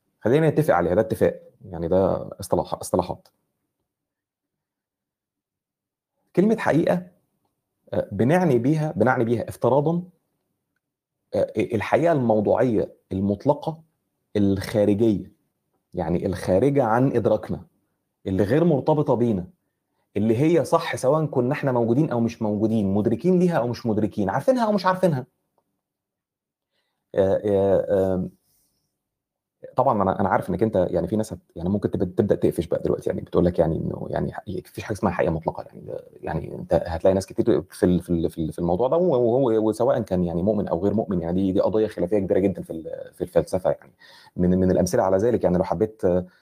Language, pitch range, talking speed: Arabic, 100-145 Hz, 145 wpm